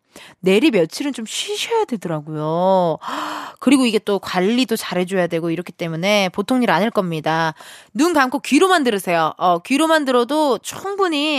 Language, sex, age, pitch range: Korean, female, 20-39, 185-305 Hz